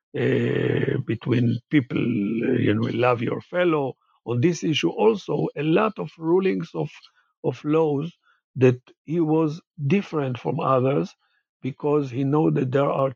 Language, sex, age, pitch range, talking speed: English, male, 60-79, 130-170 Hz, 145 wpm